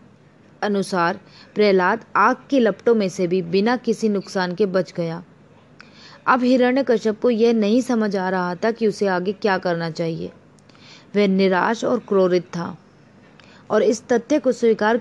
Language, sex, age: Hindi, female, 20-39